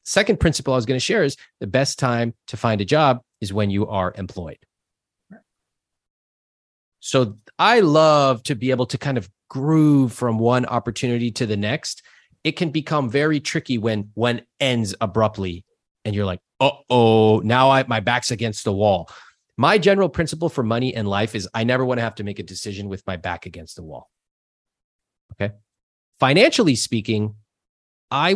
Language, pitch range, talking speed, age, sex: English, 105-135 Hz, 175 wpm, 30-49, male